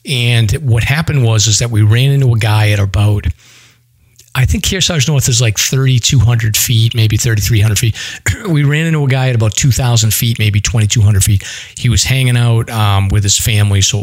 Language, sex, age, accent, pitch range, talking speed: English, male, 40-59, American, 100-120 Hz, 195 wpm